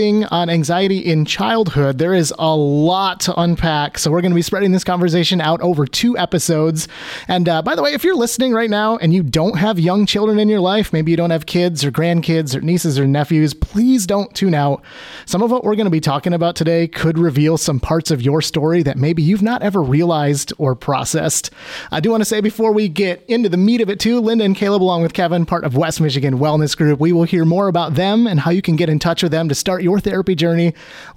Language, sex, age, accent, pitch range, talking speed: English, male, 30-49, American, 155-200 Hz, 245 wpm